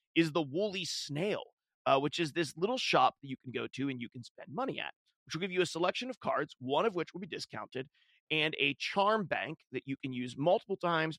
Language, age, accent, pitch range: English, 30-49, American, 140-180 Hz